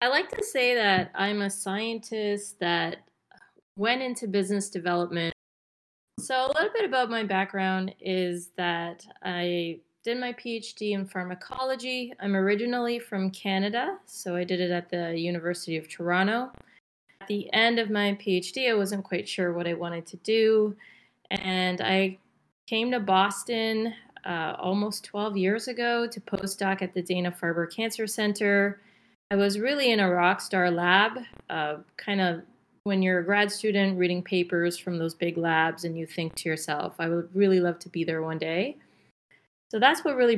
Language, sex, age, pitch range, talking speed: English, female, 30-49, 180-225 Hz, 165 wpm